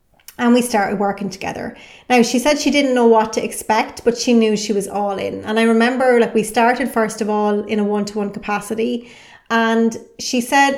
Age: 30-49